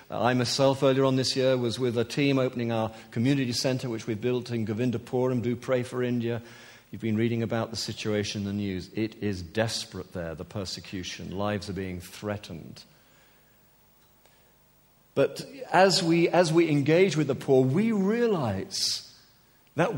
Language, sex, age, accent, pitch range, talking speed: English, male, 50-69, British, 115-145 Hz, 160 wpm